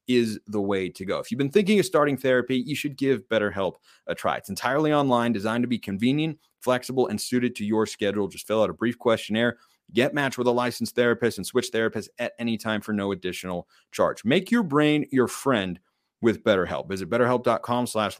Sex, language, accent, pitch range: male, English, American, 115-140 Hz